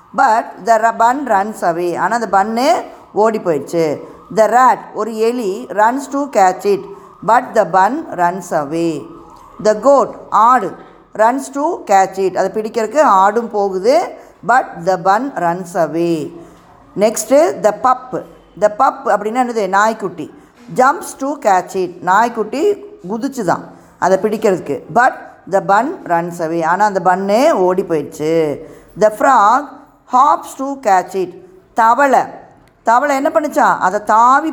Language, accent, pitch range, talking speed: Tamil, native, 185-255 Hz, 130 wpm